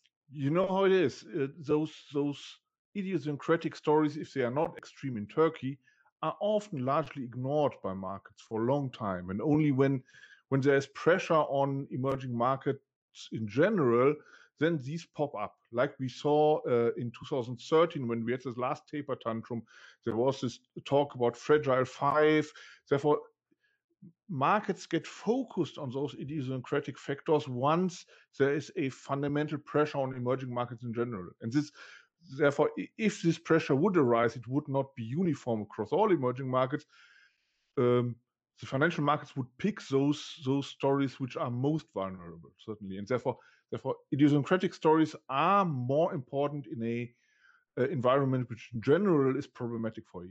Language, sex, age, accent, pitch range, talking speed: English, male, 50-69, German, 125-155 Hz, 155 wpm